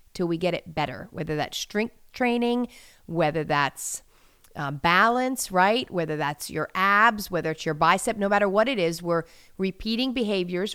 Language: English